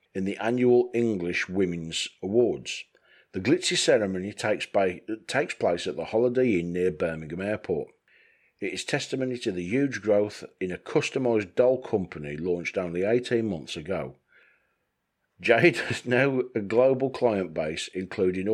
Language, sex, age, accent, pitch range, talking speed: English, male, 40-59, British, 90-125 Hz, 140 wpm